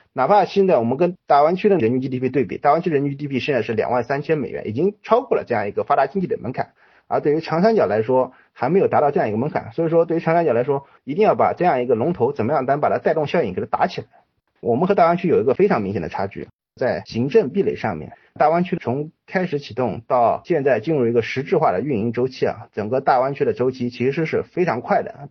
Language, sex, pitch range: Chinese, male, 125-195 Hz